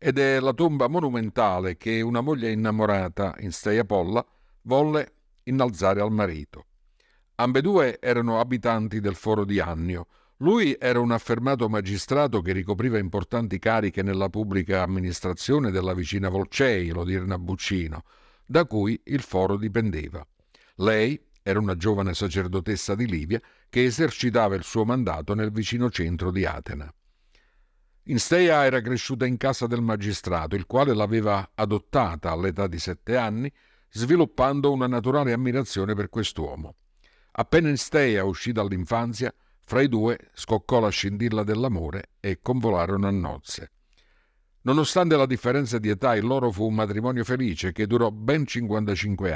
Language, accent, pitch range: Italian, native, 95-125 Hz